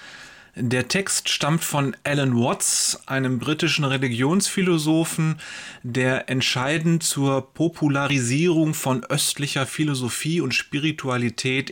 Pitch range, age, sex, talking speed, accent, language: 120-165 Hz, 30-49, male, 90 wpm, German, German